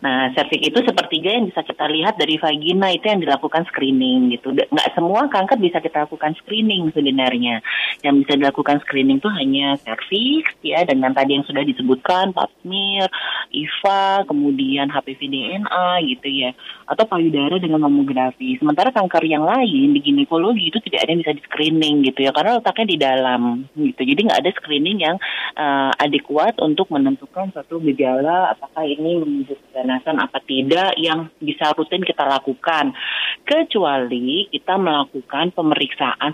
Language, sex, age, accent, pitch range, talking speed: Indonesian, female, 20-39, native, 140-190 Hz, 155 wpm